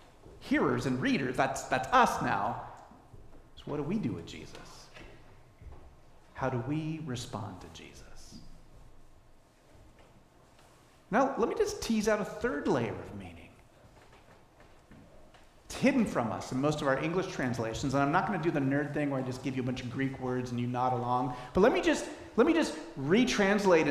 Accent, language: American, English